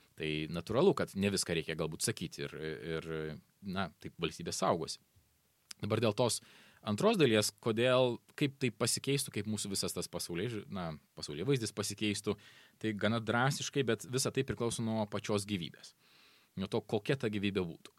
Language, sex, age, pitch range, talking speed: English, male, 20-39, 100-130 Hz, 155 wpm